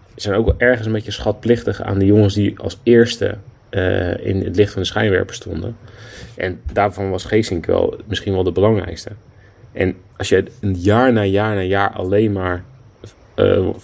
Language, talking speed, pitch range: Dutch, 180 wpm, 90-105 Hz